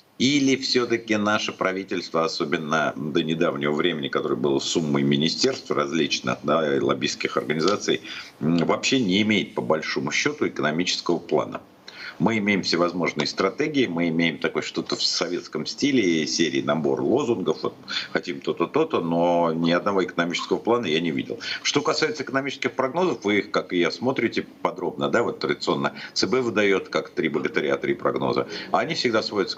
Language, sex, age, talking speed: Russian, male, 50-69, 150 wpm